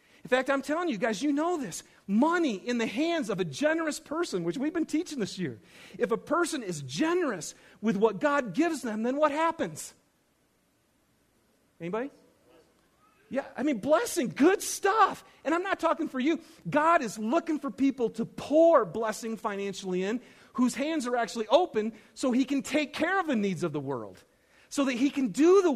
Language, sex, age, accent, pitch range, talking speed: English, male, 40-59, American, 195-300 Hz, 190 wpm